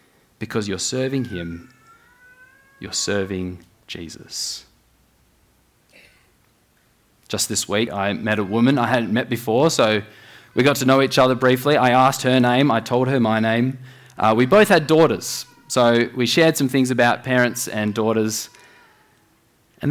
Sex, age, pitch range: male, 20-39, 110-140 Hz